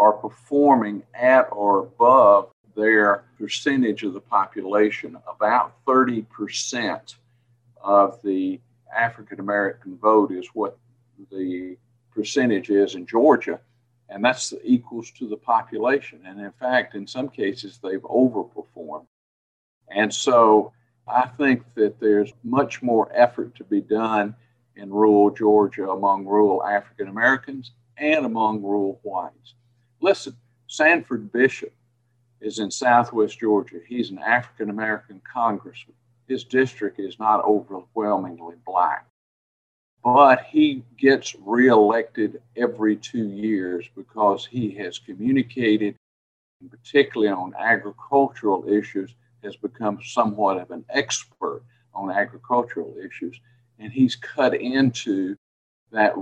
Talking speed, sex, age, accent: 115 wpm, male, 50-69, American